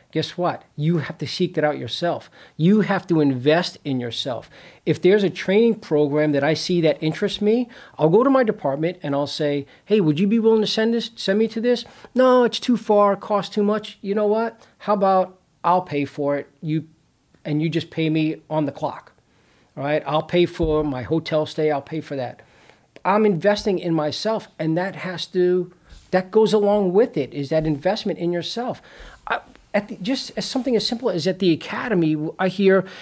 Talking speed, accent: 200 wpm, American